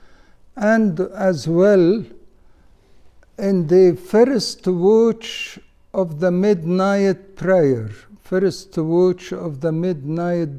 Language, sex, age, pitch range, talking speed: English, male, 60-79, 155-200 Hz, 90 wpm